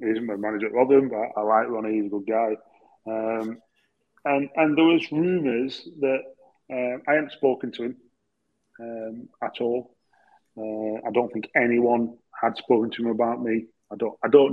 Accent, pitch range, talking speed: British, 110-140 Hz, 180 wpm